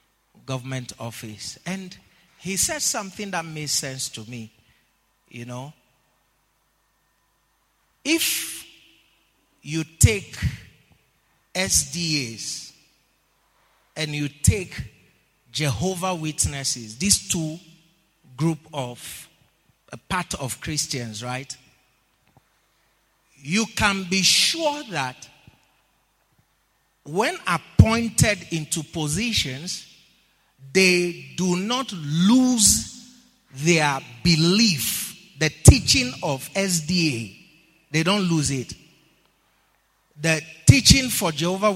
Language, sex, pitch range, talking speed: English, male, 135-190 Hz, 85 wpm